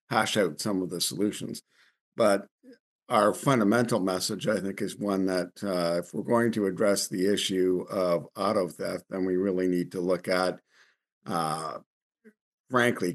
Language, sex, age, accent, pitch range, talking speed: English, male, 50-69, American, 85-100 Hz, 160 wpm